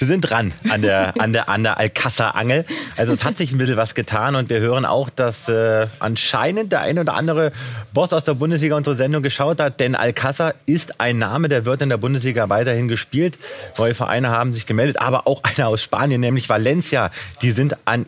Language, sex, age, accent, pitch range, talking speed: German, male, 30-49, German, 115-140 Hz, 215 wpm